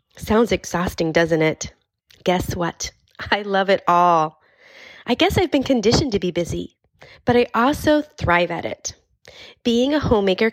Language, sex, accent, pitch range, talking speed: English, female, American, 170-230 Hz, 155 wpm